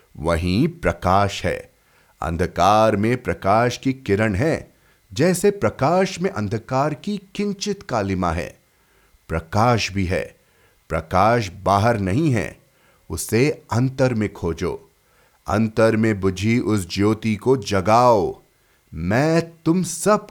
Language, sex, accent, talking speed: Hindi, male, native, 110 wpm